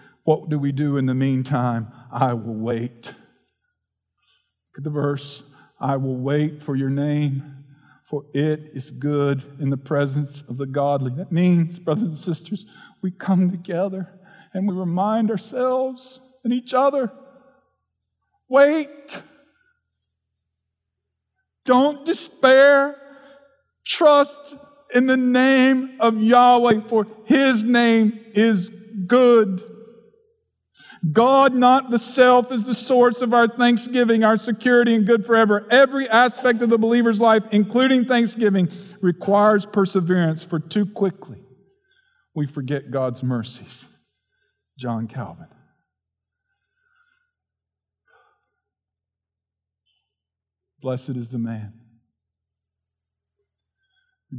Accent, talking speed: American, 110 wpm